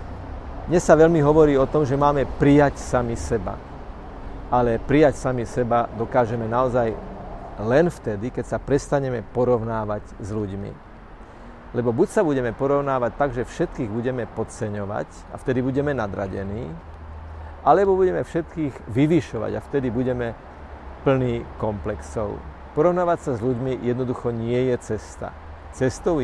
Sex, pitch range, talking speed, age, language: male, 105-140 Hz, 130 wpm, 50-69, Slovak